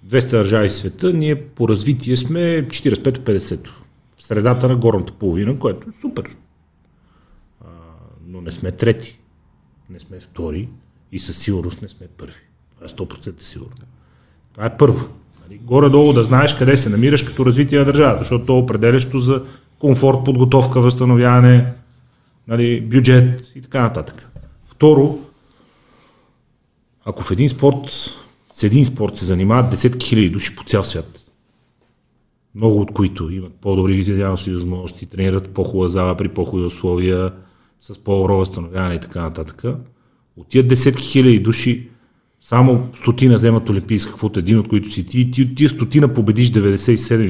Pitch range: 95-130 Hz